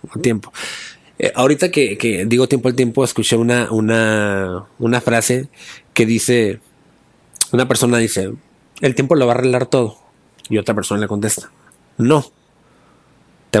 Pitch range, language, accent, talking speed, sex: 115-140 Hz, Spanish, Mexican, 140 wpm, male